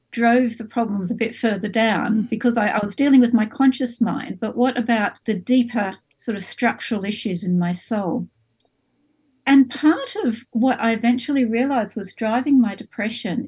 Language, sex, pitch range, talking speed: English, female, 220-260 Hz, 175 wpm